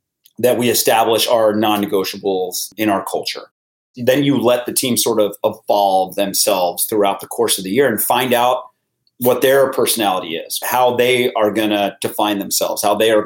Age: 30-49